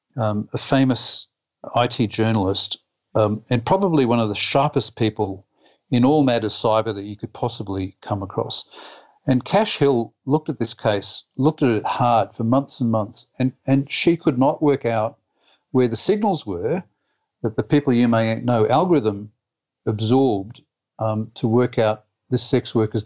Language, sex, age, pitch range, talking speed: English, male, 50-69, 110-140 Hz, 165 wpm